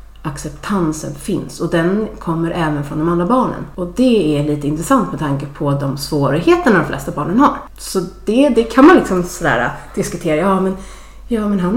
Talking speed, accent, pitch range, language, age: 190 wpm, native, 155-210 Hz, Swedish, 30-49